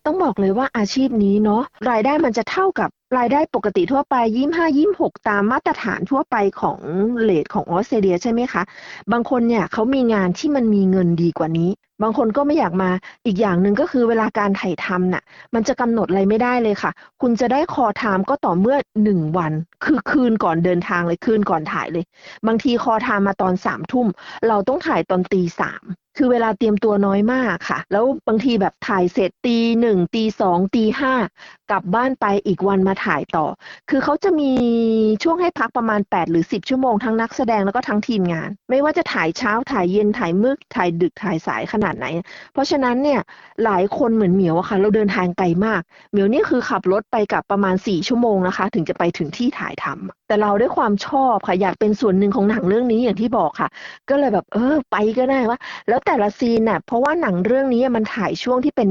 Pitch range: 190-250 Hz